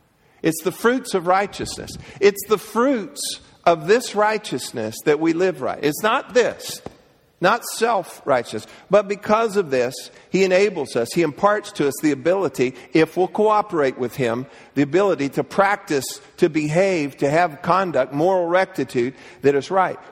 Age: 50-69